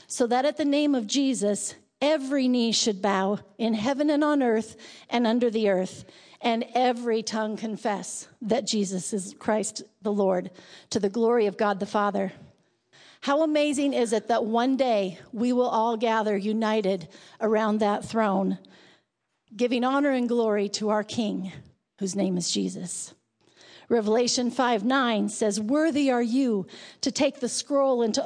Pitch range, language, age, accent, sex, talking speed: 210-260 Hz, English, 50-69, American, female, 160 wpm